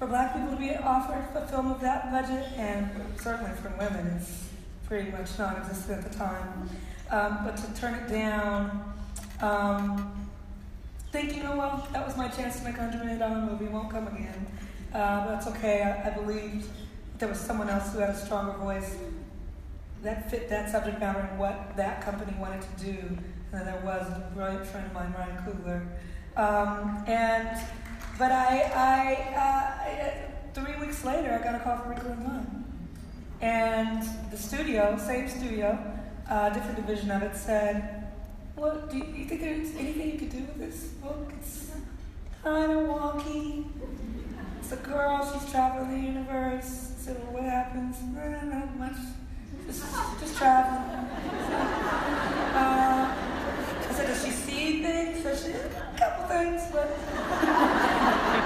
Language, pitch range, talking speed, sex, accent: English, 205-275 Hz, 170 wpm, female, American